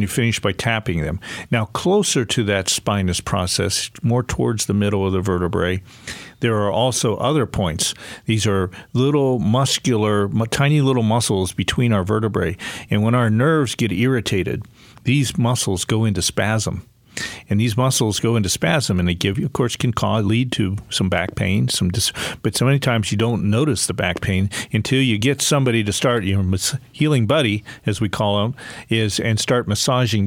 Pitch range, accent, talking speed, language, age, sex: 100-130 Hz, American, 185 wpm, English, 50-69, male